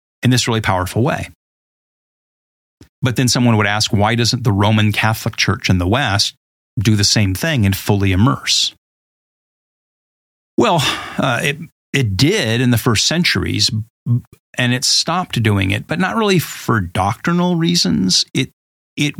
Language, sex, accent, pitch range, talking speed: English, male, American, 105-140 Hz, 150 wpm